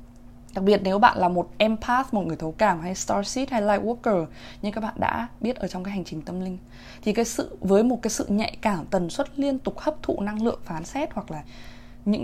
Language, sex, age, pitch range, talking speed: Vietnamese, female, 20-39, 160-220 Hz, 240 wpm